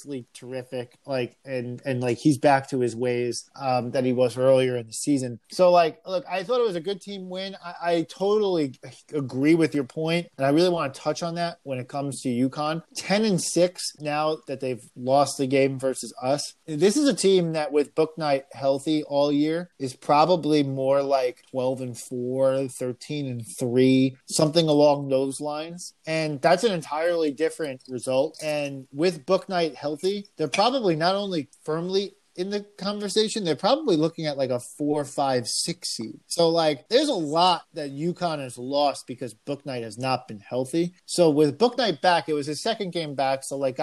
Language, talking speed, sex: English, 190 wpm, male